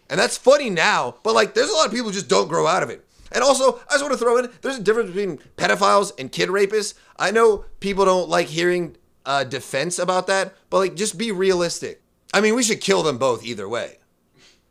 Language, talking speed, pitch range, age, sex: English, 235 wpm, 140-210 Hz, 30-49, male